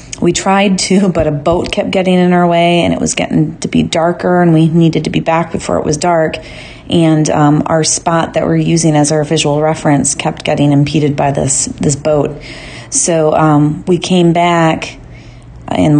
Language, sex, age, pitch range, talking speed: English, female, 30-49, 150-175 Hz, 195 wpm